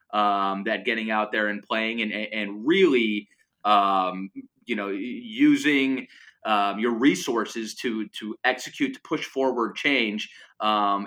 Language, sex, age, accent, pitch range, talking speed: English, male, 30-49, American, 105-135 Hz, 135 wpm